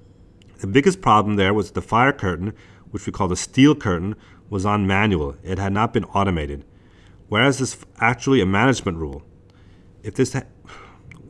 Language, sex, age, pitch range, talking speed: English, male, 40-59, 95-115 Hz, 170 wpm